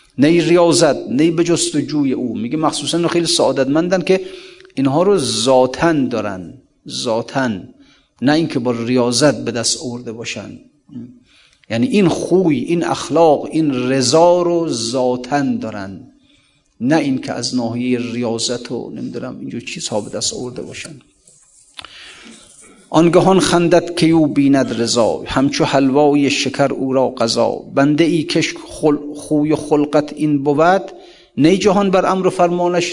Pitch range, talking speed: 130-170 Hz, 140 wpm